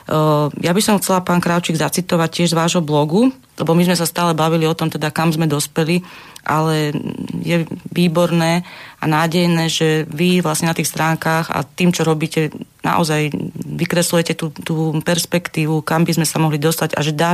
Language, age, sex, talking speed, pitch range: Slovak, 30-49, female, 180 wpm, 155-175 Hz